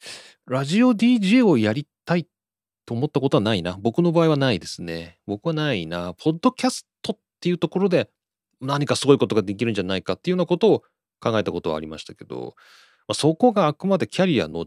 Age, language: 30-49, Japanese